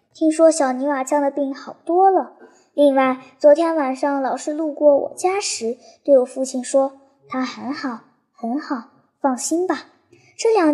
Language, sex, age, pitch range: Chinese, male, 10-29, 270-350 Hz